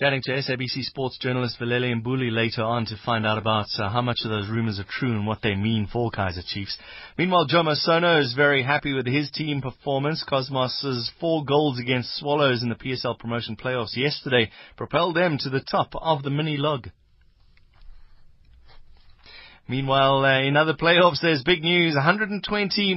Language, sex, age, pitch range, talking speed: English, male, 30-49, 120-155 Hz, 170 wpm